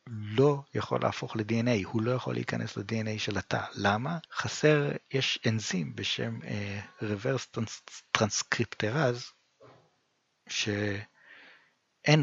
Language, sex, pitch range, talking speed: Hebrew, male, 105-135 Hz, 100 wpm